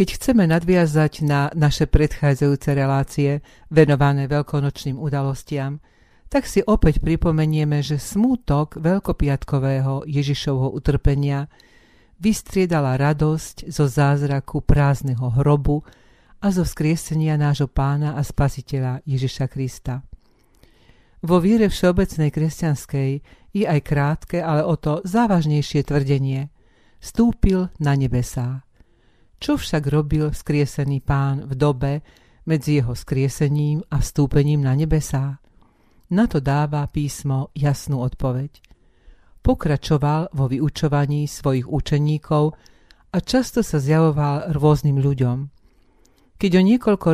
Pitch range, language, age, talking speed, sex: 140-155 Hz, Slovak, 50-69, 105 wpm, female